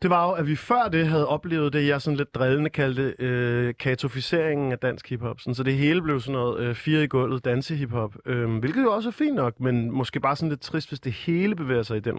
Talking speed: 250 wpm